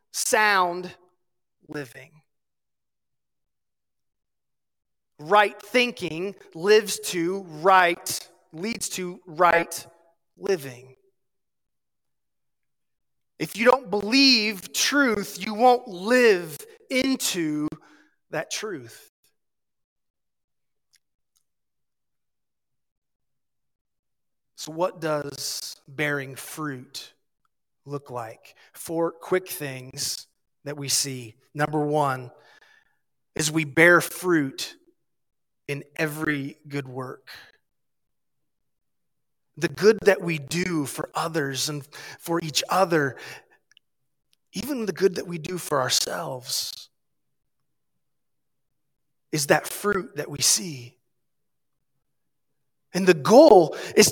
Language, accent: English, American